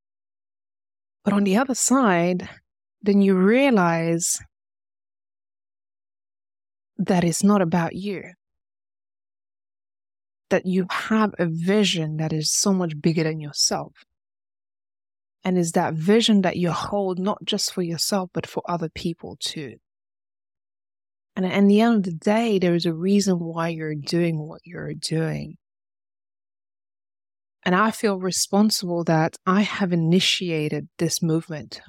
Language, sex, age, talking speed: English, female, 20-39, 130 wpm